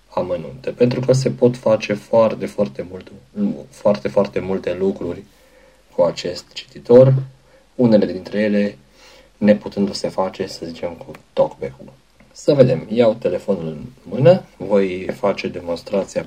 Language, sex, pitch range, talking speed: Romanian, male, 95-130 Hz, 135 wpm